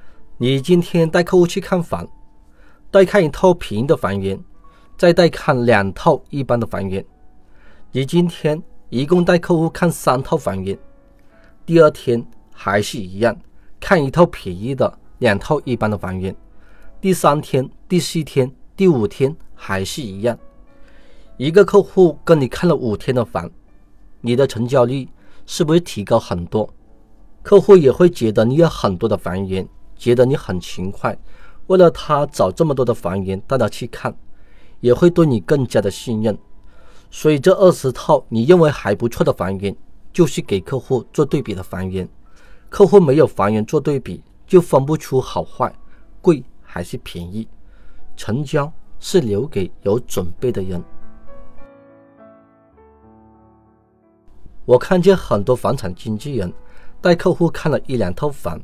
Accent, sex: native, male